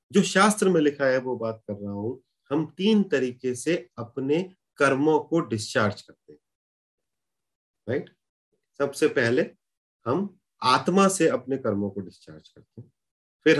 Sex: male